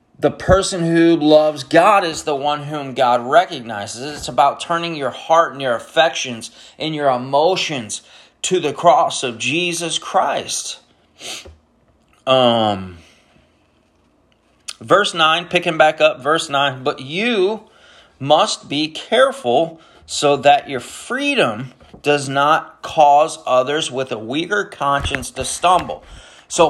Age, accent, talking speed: 30-49, American, 125 wpm